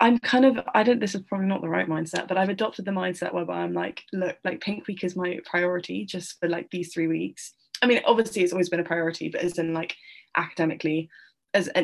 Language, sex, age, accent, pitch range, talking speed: English, female, 10-29, British, 170-195 Hz, 240 wpm